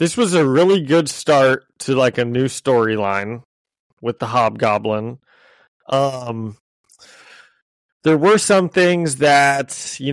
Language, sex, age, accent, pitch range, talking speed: English, male, 30-49, American, 115-155 Hz, 125 wpm